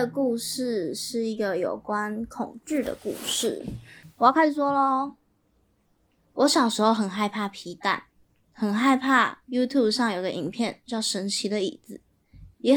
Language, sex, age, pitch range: Chinese, female, 10-29, 205-270 Hz